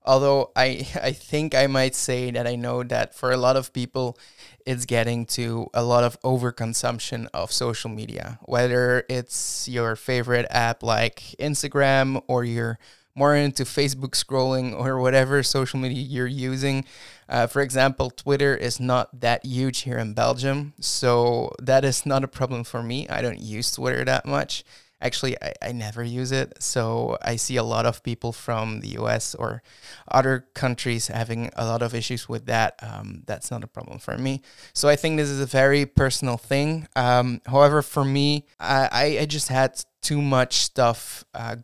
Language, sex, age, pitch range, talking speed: English, male, 20-39, 120-135 Hz, 180 wpm